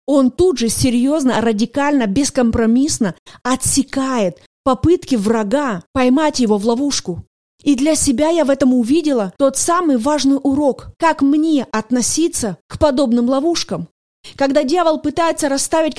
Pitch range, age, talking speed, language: 250-315 Hz, 20-39, 130 wpm, Russian